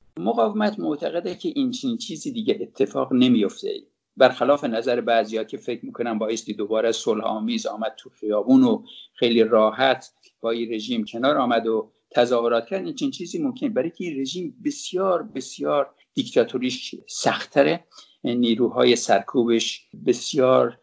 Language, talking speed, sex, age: English, 130 wpm, male, 50-69